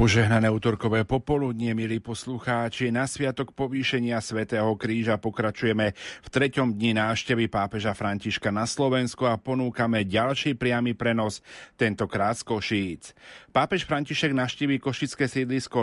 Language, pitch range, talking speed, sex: Slovak, 105-120 Hz, 120 wpm, male